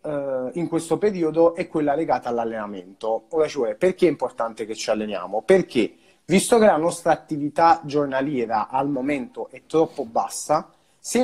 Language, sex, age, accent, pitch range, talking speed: Italian, male, 30-49, native, 120-170 Hz, 150 wpm